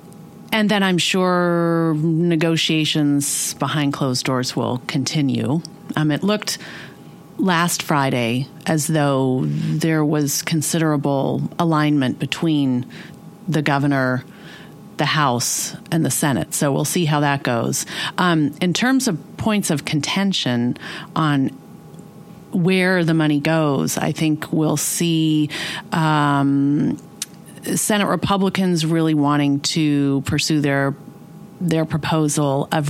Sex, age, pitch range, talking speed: female, 40-59, 140-170 Hz, 115 wpm